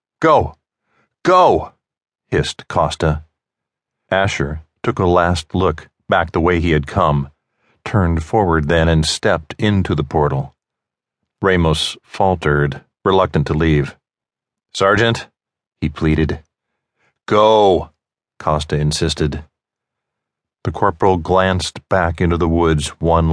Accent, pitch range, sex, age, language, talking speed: American, 75-95 Hz, male, 40-59, English, 110 wpm